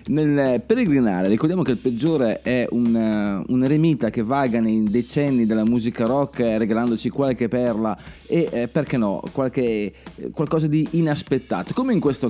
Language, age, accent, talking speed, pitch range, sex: Italian, 30-49, native, 145 wpm, 120-170 Hz, male